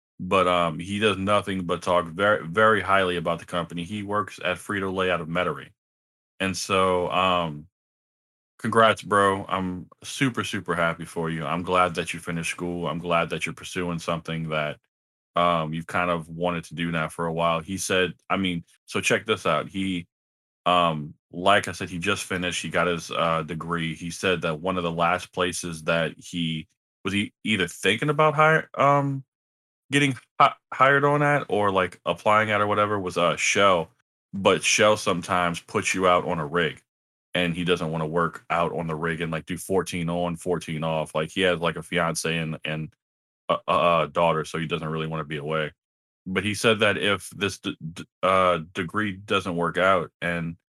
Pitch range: 85-95 Hz